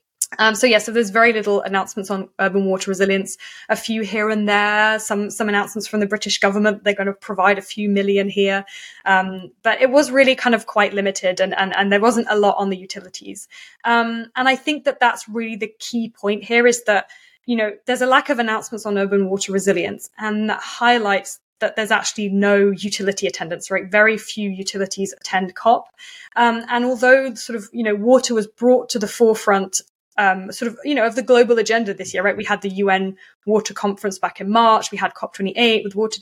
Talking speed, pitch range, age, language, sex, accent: 215 wpm, 195-235 Hz, 20-39, English, female, British